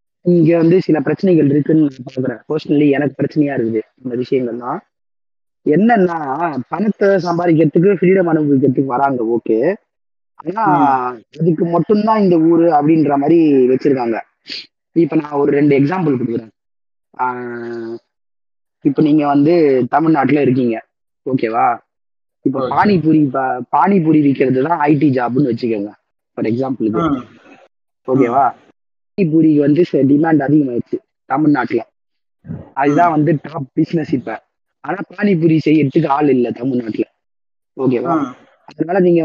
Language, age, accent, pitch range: Tamil, 20-39, native, 125-165 Hz